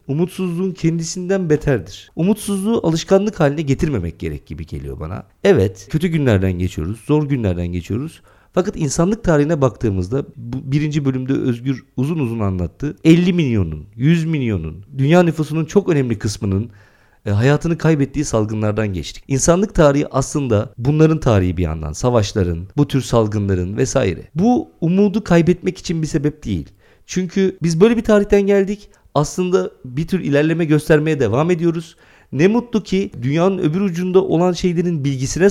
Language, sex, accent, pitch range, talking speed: Turkish, male, native, 125-180 Hz, 140 wpm